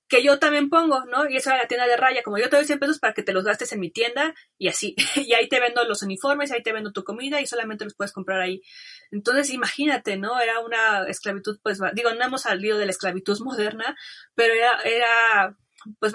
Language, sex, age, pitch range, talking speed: Spanish, female, 20-39, 205-250 Hz, 240 wpm